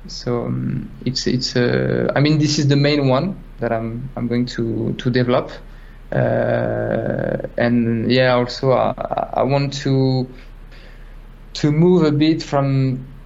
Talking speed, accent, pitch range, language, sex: 145 wpm, French, 120-140 Hz, English, male